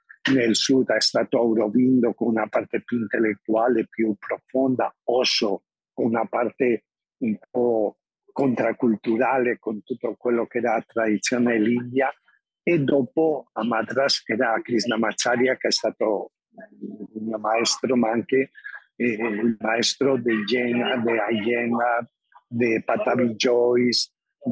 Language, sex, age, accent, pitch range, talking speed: Italian, male, 50-69, native, 110-130 Hz, 130 wpm